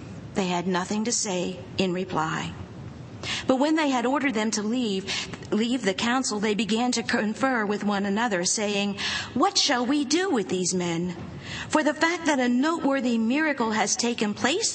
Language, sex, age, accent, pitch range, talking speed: English, female, 50-69, American, 190-260 Hz, 175 wpm